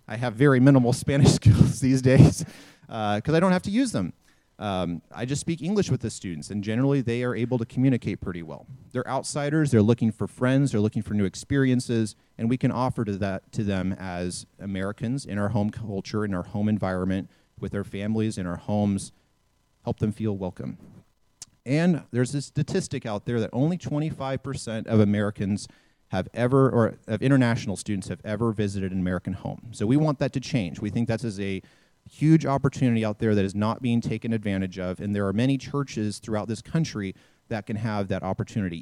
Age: 30-49